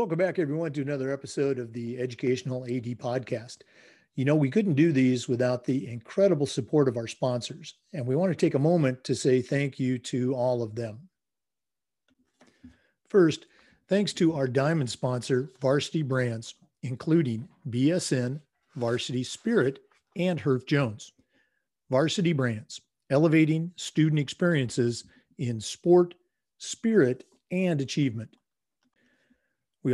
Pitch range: 125-170 Hz